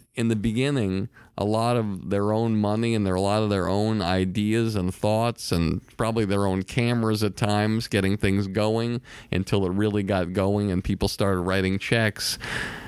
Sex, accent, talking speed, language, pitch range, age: male, American, 175 wpm, English, 100-125 Hz, 40-59